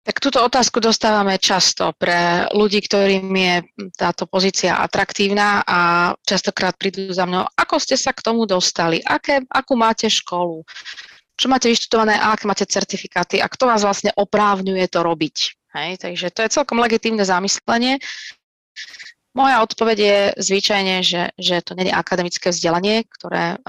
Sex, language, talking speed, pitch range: female, Slovak, 150 wpm, 170-200 Hz